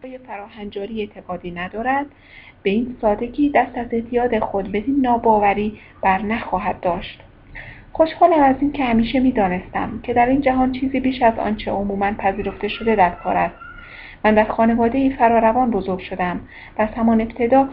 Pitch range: 195-250 Hz